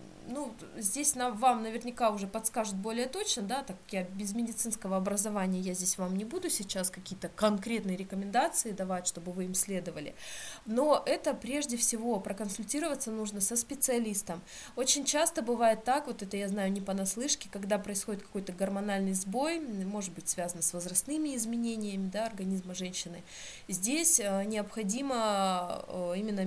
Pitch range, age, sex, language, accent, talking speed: 190-235 Hz, 20-39, female, Russian, native, 145 wpm